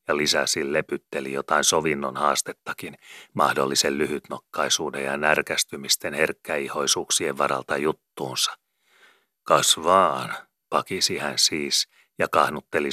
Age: 30-49